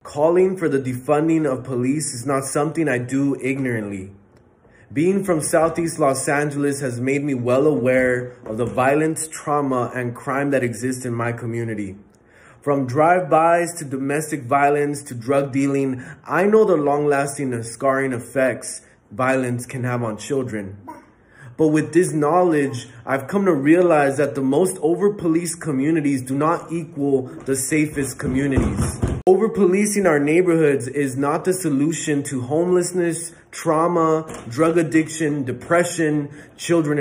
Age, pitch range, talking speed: 20-39, 130-160 Hz, 140 wpm